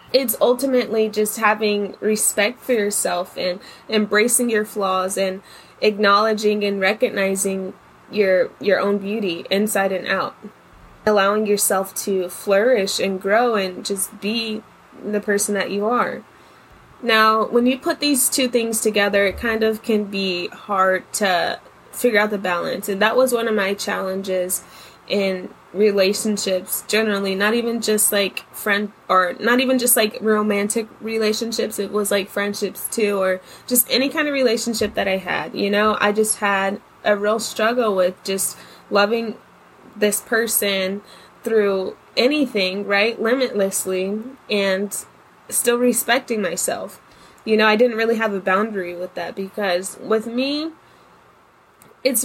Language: English